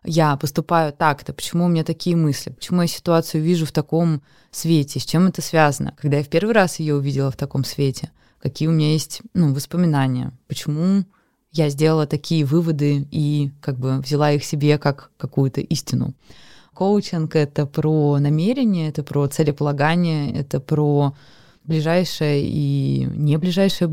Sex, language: female, Russian